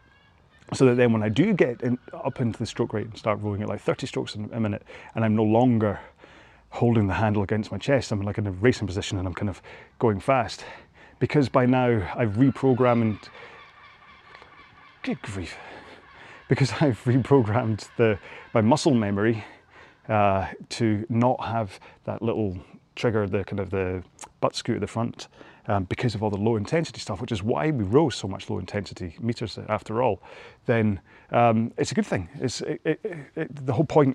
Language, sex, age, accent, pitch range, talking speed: English, male, 30-49, British, 105-120 Hz, 185 wpm